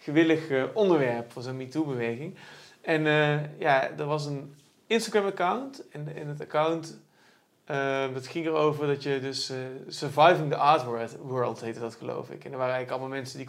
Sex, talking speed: male, 180 wpm